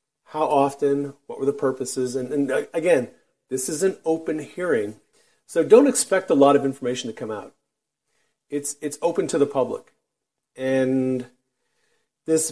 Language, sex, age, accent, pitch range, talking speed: English, male, 40-59, American, 125-150 Hz, 155 wpm